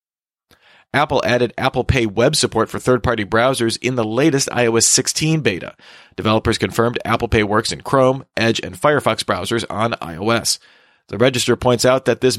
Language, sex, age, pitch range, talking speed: English, male, 40-59, 110-135 Hz, 165 wpm